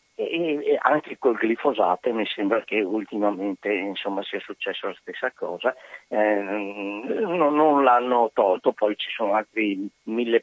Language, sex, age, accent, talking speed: Italian, male, 50-69, native, 145 wpm